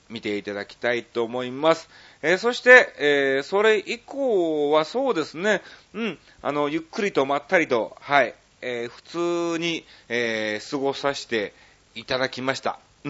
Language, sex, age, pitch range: Japanese, male, 30-49, 110-165 Hz